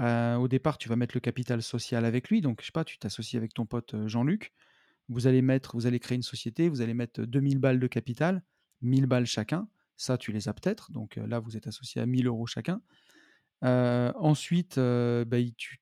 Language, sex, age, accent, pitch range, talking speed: French, male, 30-49, French, 120-145 Hz, 225 wpm